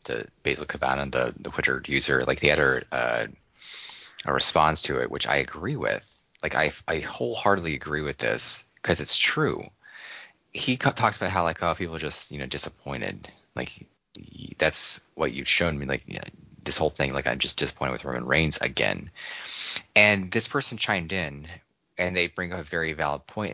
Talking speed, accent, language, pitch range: 195 wpm, American, English, 75-95 Hz